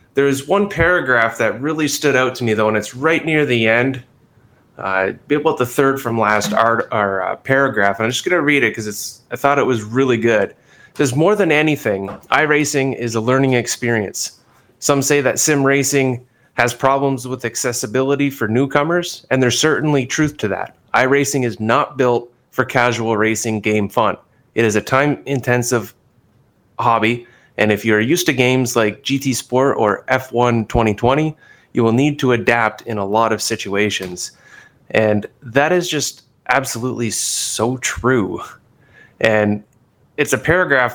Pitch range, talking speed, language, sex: 110-140 Hz, 165 wpm, English, male